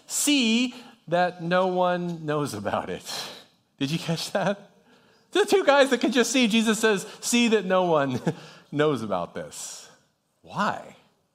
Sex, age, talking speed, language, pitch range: male, 40-59, 150 wpm, English, 145-210 Hz